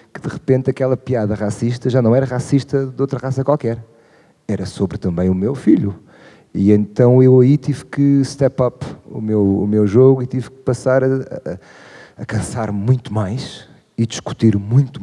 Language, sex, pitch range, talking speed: Portuguese, male, 105-130 Hz, 175 wpm